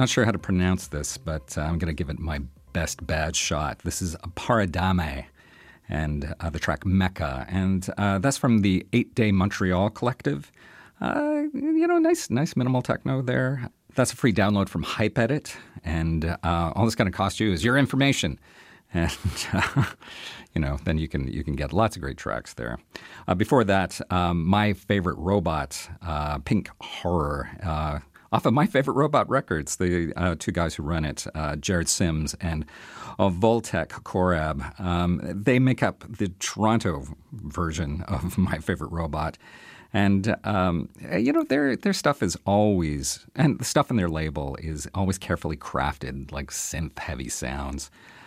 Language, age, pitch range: English, 40-59, 80-105 Hz